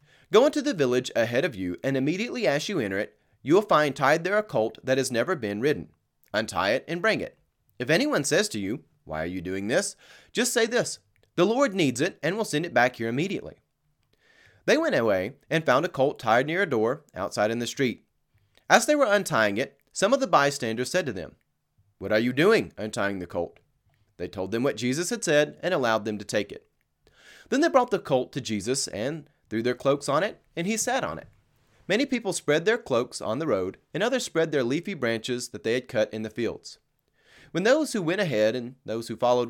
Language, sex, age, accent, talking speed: English, male, 30-49, American, 225 wpm